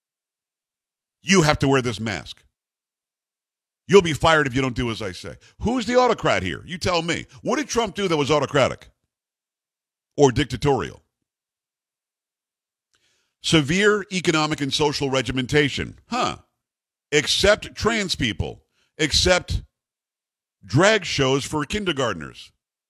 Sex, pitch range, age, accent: male, 125-170 Hz, 50-69, American